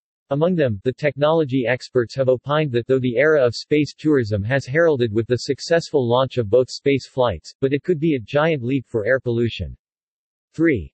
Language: English